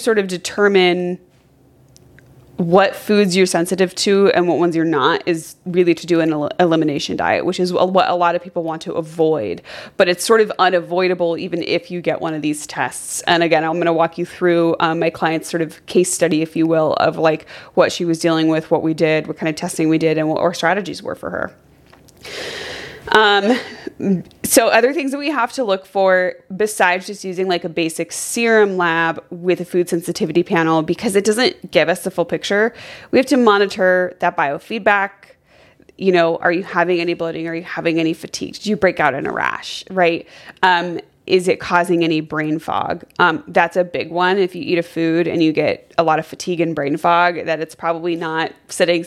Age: 20-39